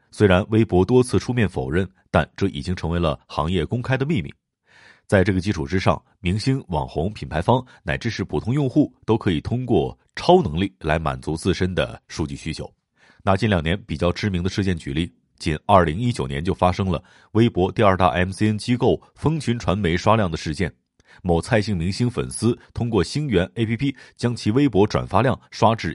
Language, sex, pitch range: Chinese, male, 90-120 Hz